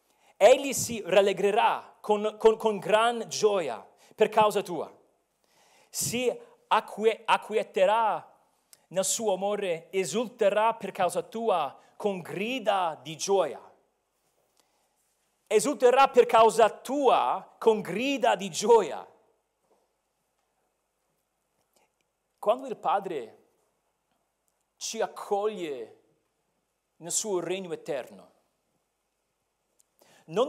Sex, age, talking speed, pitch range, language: male, 40-59, 85 wpm, 185-230 Hz, Italian